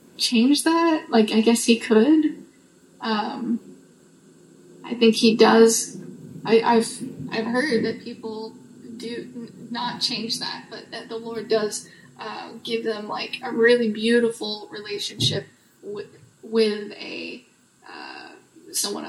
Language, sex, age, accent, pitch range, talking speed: English, female, 10-29, American, 225-245 Hz, 125 wpm